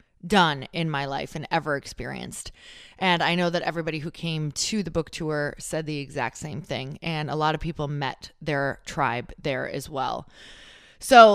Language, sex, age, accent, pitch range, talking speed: English, female, 20-39, American, 155-195 Hz, 185 wpm